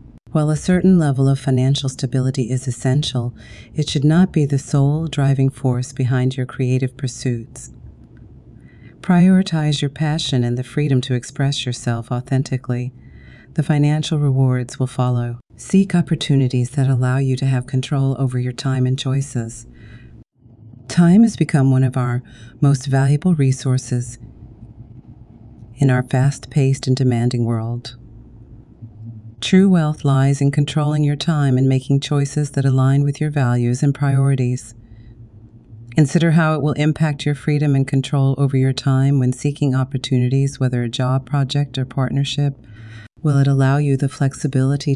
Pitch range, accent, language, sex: 125-145 Hz, American, English, female